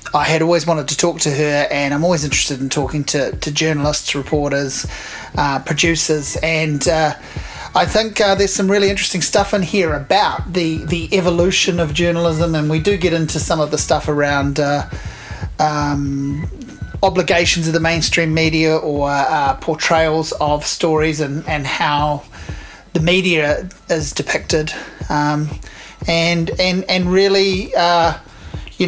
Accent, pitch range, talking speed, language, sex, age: Australian, 150-175 Hz, 155 wpm, English, male, 30-49